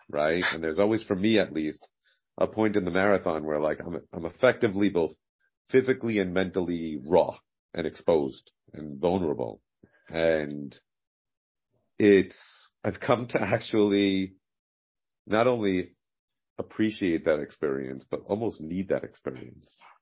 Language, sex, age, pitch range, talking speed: English, male, 40-59, 75-100 Hz, 130 wpm